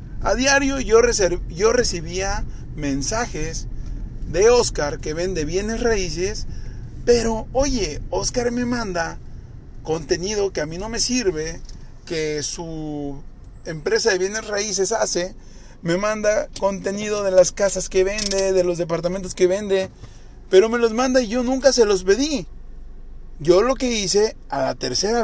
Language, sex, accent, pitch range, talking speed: Spanish, male, Mexican, 160-230 Hz, 145 wpm